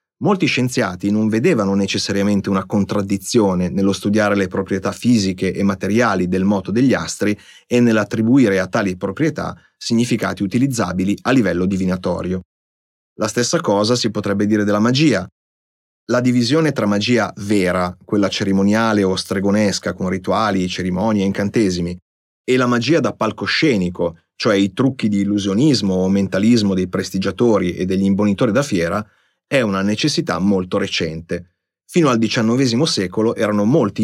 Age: 30-49